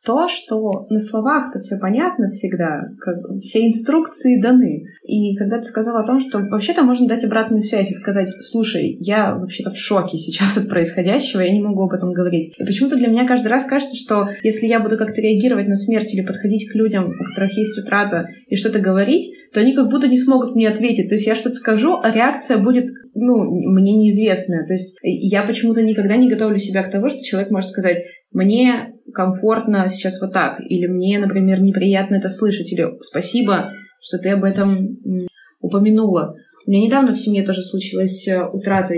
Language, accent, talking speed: Russian, native, 190 wpm